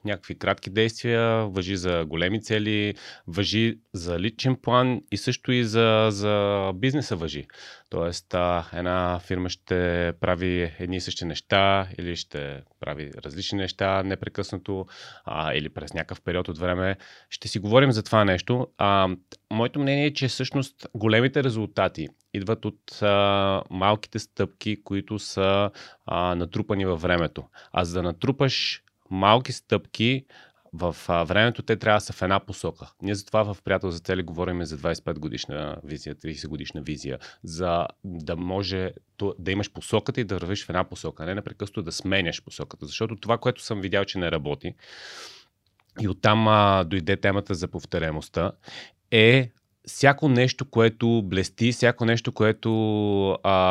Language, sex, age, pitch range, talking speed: Bulgarian, male, 30-49, 90-110 Hz, 155 wpm